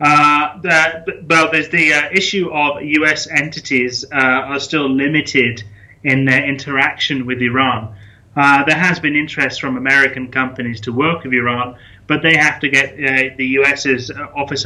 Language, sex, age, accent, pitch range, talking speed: English, male, 30-49, British, 130-150 Hz, 165 wpm